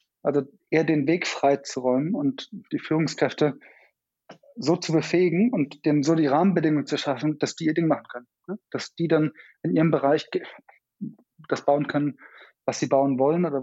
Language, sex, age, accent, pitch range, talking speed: German, male, 20-39, German, 135-170 Hz, 180 wpm